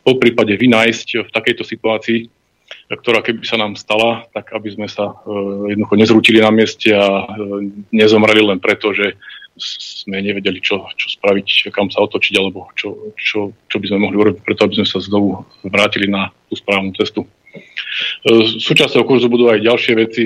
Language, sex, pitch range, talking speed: Slovak, male, 105-120 Hz, 165 wpm